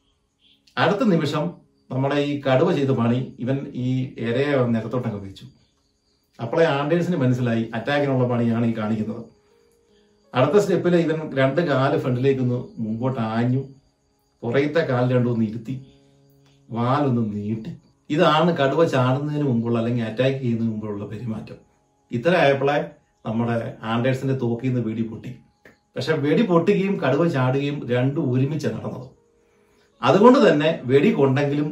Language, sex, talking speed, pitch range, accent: Malayalam, male, 110 wpm, 115-145 Hz, native